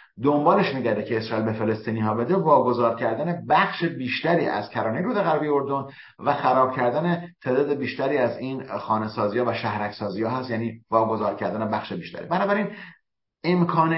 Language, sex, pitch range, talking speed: Persian, male, 110-145 Hz, 165 wpm